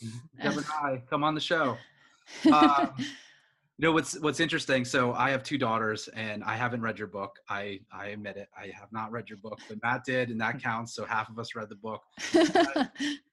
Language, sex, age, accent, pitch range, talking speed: English, male, 30-49, American, 105-125 Hz, 210 wpm